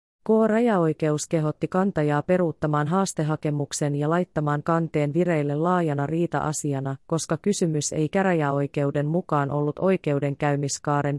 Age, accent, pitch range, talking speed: 30-49, native, 145-180 Hz, 95 wpm